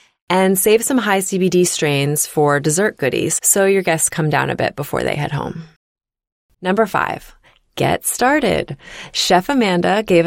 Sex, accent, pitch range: female, American, 150-190 Hz